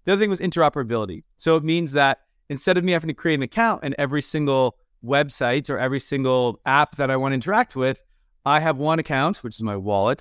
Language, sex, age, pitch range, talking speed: English, male, 20-39, 125-160 Hz, 230 wpm